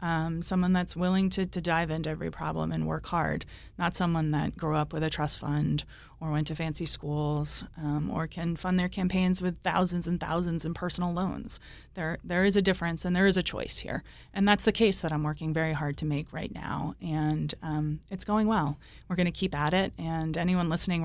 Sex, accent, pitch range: female, American, 155-185 Hz